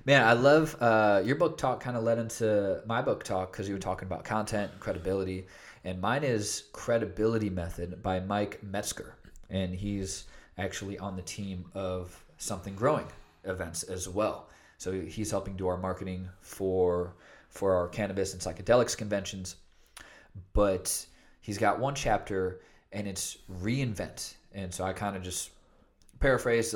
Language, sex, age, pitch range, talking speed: English, male, 20-39, 95-120 Hz, 155 wpm